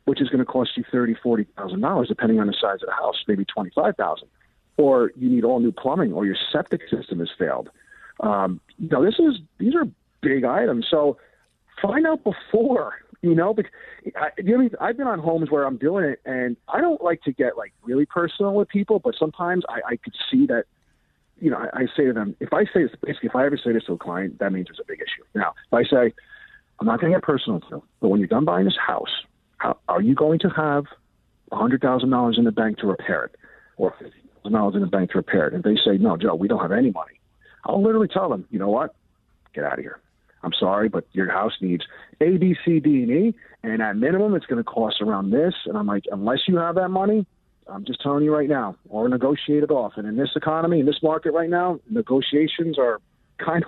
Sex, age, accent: male, 40-59, American